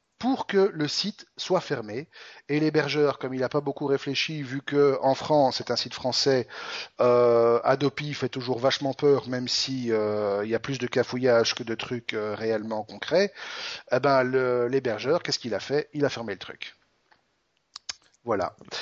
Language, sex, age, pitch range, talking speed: French, male, 30-49, 125-160 Hz, 175 wpm